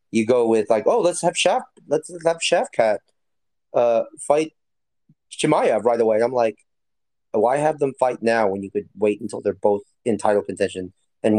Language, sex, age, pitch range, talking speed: English, male, 30-49, 110-155 Hz, 195 wpm